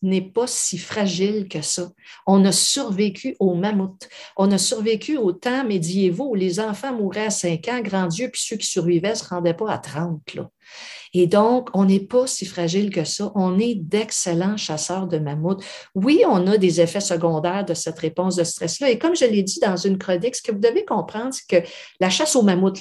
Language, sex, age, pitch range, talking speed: French, female, 50-69, 175-225 Hz, 215 wpm